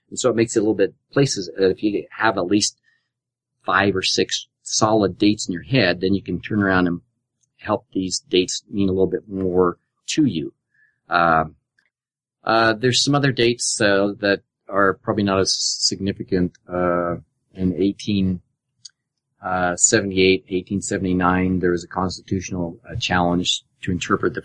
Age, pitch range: 30-49, 90-115 Hz